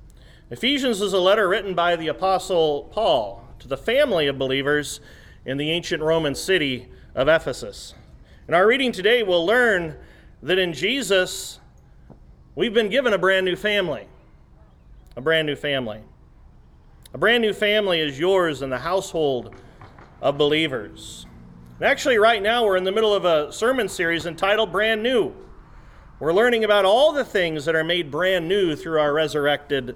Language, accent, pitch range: English, American, 140-200 Hz